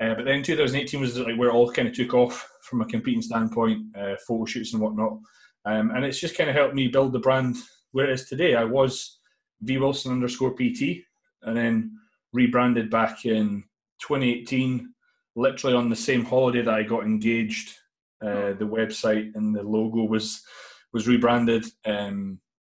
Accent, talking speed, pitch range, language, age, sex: British, 180 wpm, 110-135 Hz, English, 20-39, male